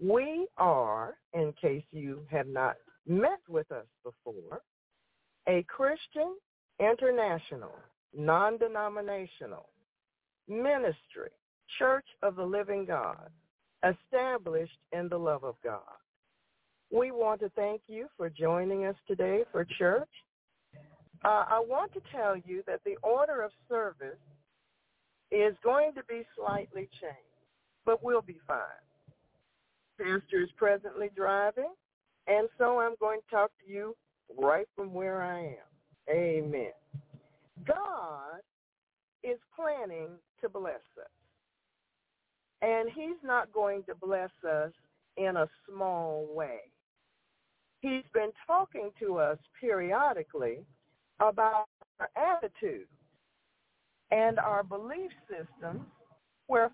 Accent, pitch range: American, 175-265 Hz